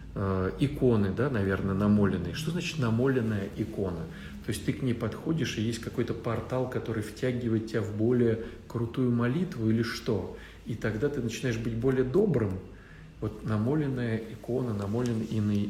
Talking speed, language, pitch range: 150 wpm, Russian, 100-120 Hz